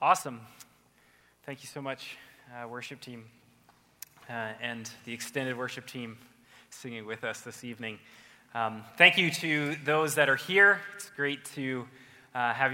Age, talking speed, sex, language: 20-39, 150 wpm, male, English